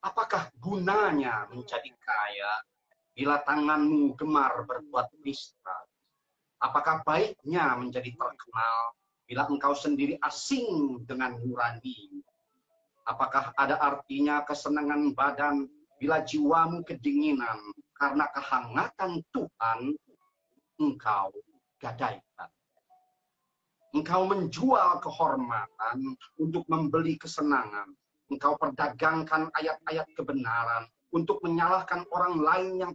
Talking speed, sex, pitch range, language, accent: 85 wpm, male, 130-200 Hz, Indonesian, native